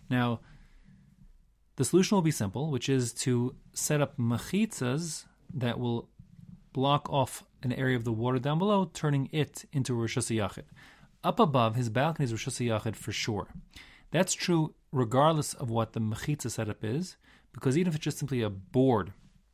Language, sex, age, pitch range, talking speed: English, male, 30-49, 115-150 Hz, 165 wpm